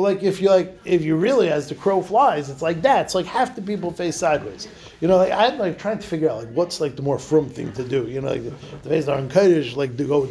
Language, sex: English, male